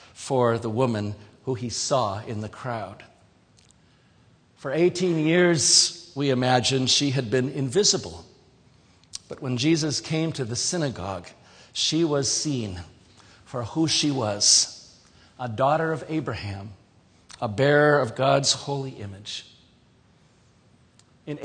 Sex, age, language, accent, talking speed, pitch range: male, 50-69, English, American, 120 wpm, 115-155 Hz